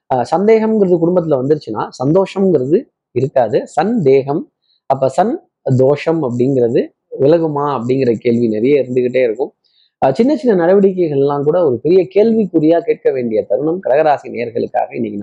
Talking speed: 120 wpm